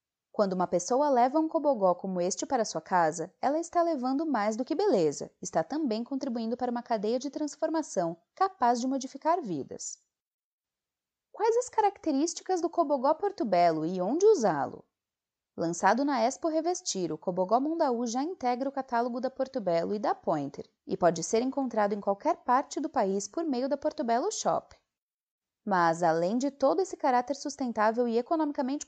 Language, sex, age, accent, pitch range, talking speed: Portuguese, female, 20-39, Brazilian, 205-310 Hz, 170 wpm